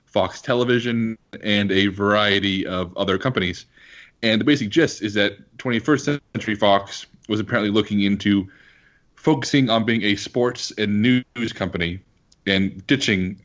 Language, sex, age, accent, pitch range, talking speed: English, male, 30-49, American, 100-125 Hz, 140 wpm